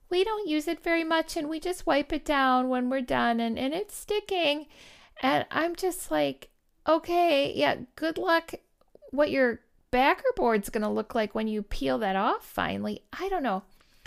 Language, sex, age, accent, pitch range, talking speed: English, female, 50-69, American, 190-285 Hz, 190 wpm